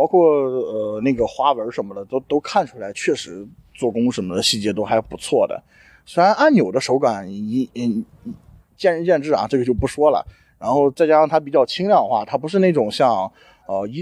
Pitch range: 125-180 Hz